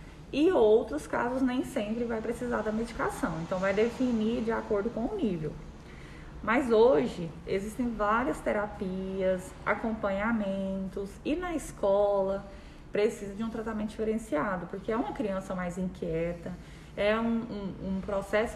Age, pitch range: 20-39, 190-235 Hz